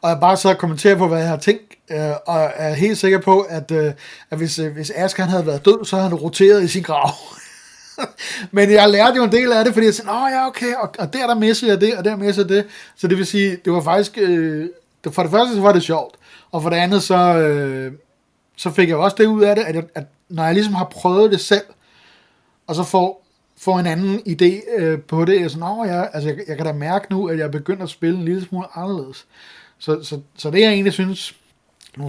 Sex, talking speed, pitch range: male, 250 wpm, 160-200 Hz